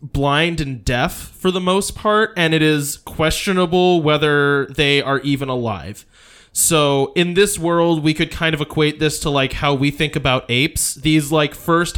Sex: male